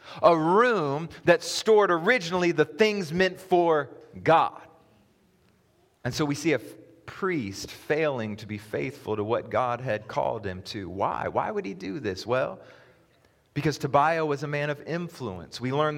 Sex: male